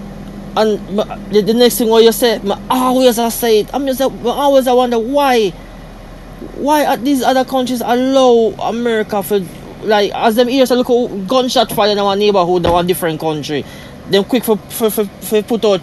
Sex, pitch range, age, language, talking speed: male, 210-260 Hz, 20-39, English, 185 wpm